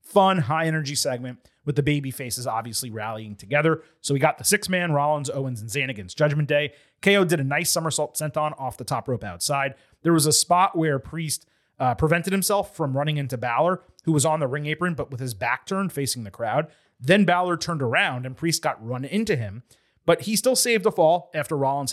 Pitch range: 130-170 Hz